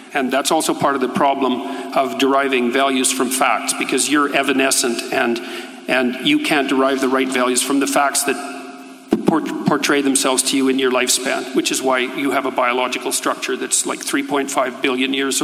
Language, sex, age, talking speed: English, male, 50-69, 185 wpm